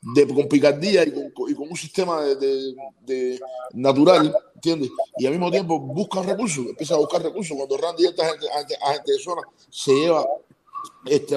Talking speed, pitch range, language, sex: 205 wpm, 130-205 Hz, English, male